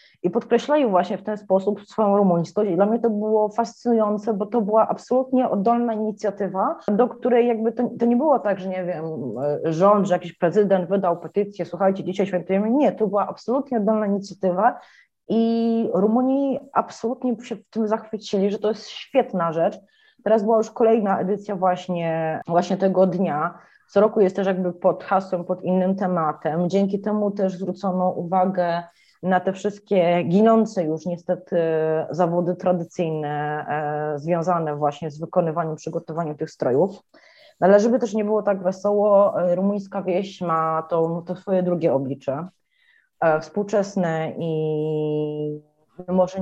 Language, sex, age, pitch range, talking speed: Polish, female, 30-49, 170-210 Hz, 150 wpm